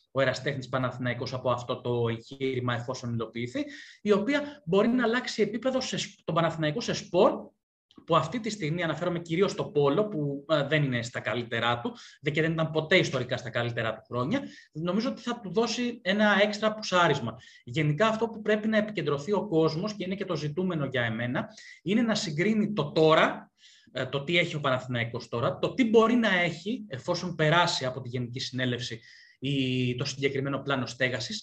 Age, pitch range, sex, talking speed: 20-39, 135-210 Hz, male, 175 wpm